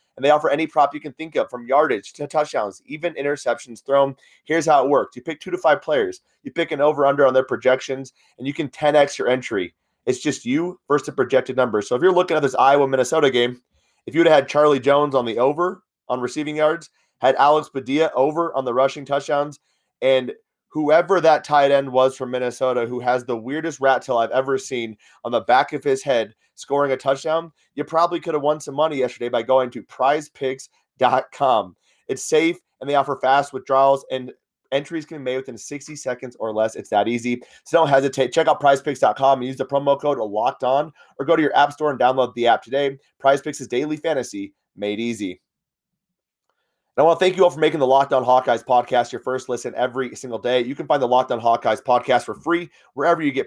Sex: male